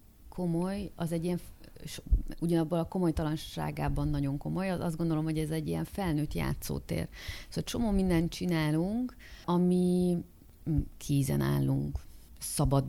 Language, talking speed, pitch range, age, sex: Hungarian, 115 wpm, 130-170 Hz, 30-49, female